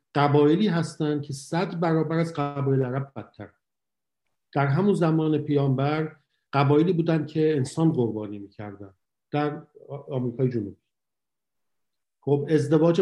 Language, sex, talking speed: English, male, 105 wpm